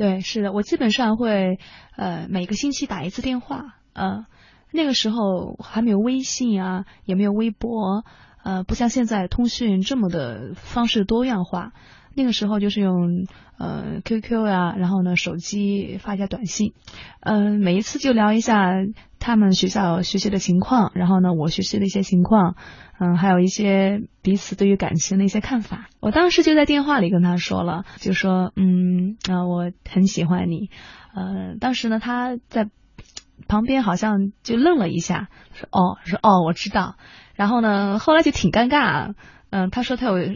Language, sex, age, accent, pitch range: Chinese, female, 20-39, native, 180-230 Hz